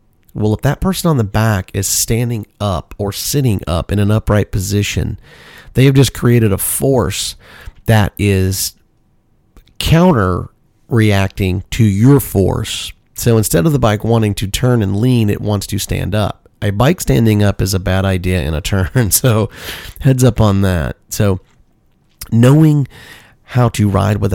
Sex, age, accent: male, 30-49, American